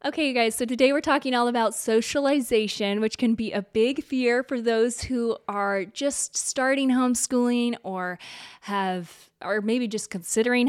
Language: English